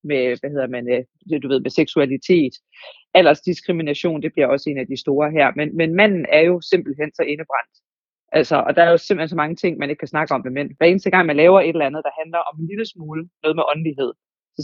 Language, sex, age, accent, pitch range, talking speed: Danish, female, 30-49, native, 150-180 Hz, 240 wpm